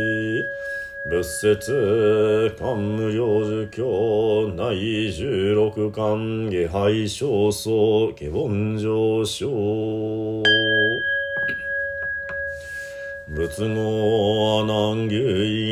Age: 40-59